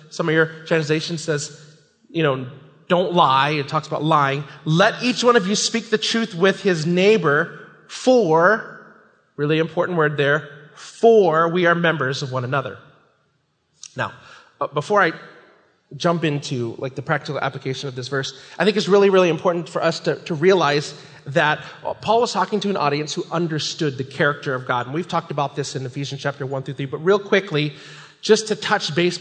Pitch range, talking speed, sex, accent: 150-205 Hz, 190 wpm, male, American